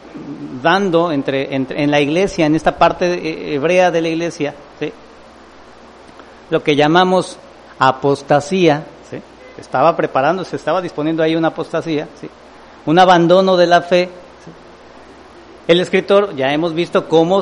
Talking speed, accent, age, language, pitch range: 140 wpm, Mexican, 40-59, English, 145-185 Hz